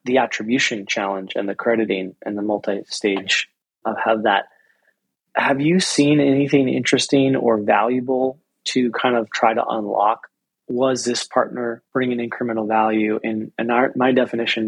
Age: 20-39